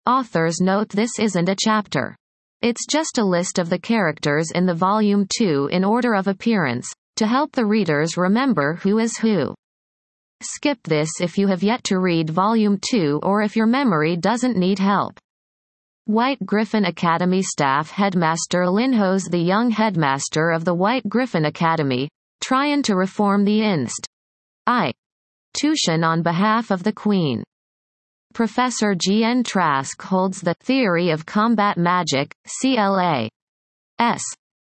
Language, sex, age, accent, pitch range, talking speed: English, female, 30-49, American, 165-225 Hz, 150 wpm